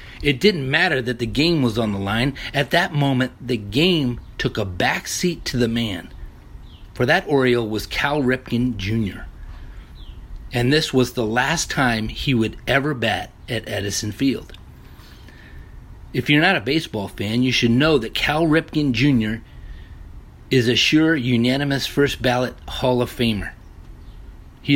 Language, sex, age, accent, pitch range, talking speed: English, male, 40-59, American, 105-145 Hz, 160 wpm